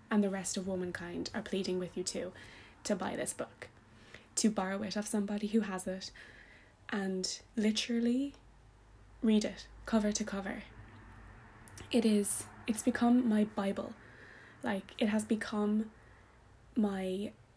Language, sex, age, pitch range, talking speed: English, female, 20-39, 185-220 Hz, 135 wpm